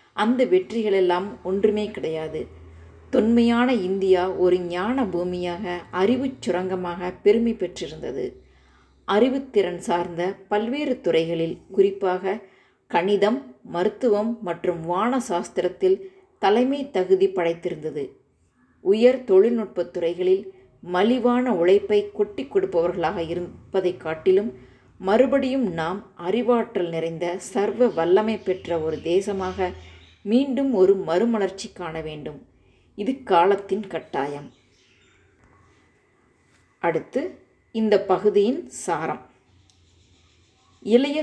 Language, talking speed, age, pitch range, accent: Tamil, 85 wpm, 30-49, 175-215 Hz, native